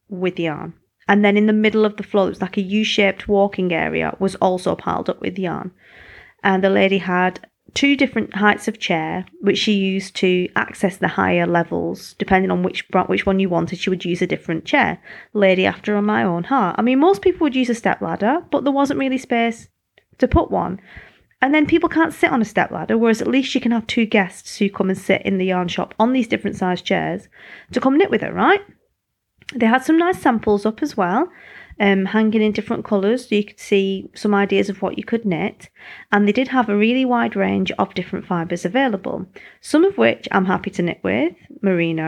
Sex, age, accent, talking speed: female, 30-49, British, 225 wpm